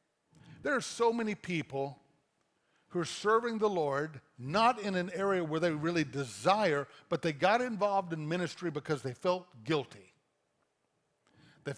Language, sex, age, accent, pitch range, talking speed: English, male, 50-69, American, 145-195 Hz, 150 wpm